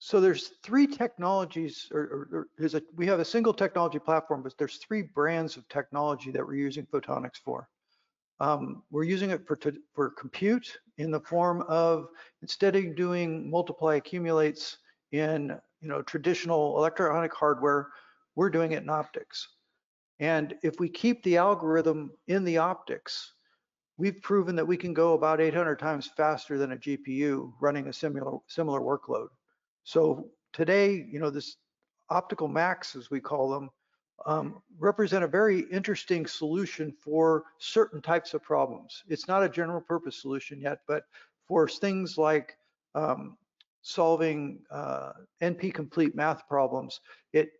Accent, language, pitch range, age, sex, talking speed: American, English, 150-180 Hz, 50-69, male, 150 wpm